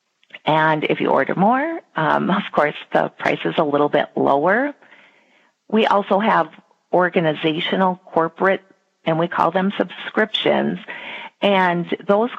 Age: 40-59